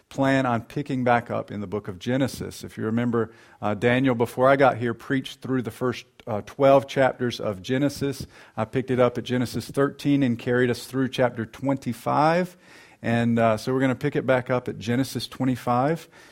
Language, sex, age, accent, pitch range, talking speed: English, male, 50-69, American, 95-130 Hz, 200 wpm